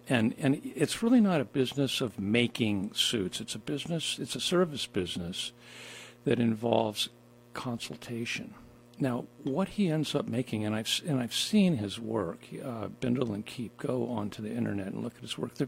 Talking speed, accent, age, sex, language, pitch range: 175 wpm, American, 50-69, male, English, 115-155 Hz